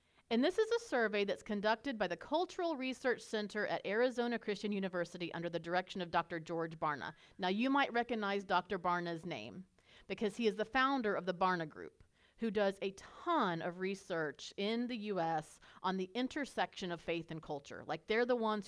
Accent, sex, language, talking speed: American, female, English, 190 wpm